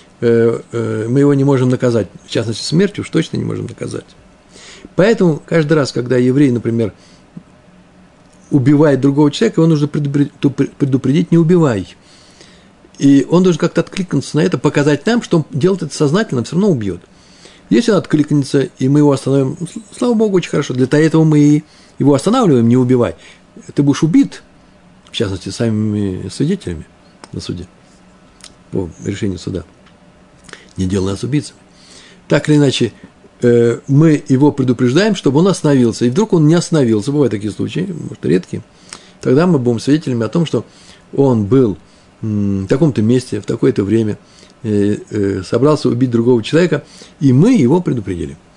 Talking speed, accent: 150 wpm, native